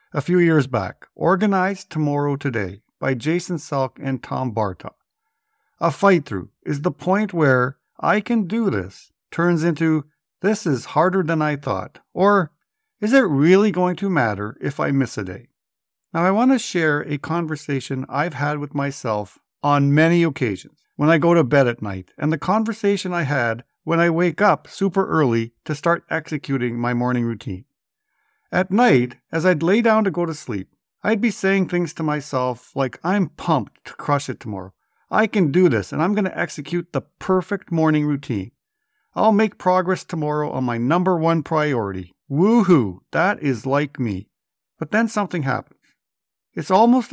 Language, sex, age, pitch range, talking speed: English, male, 60-79, 135-185 Hz, 175 wpm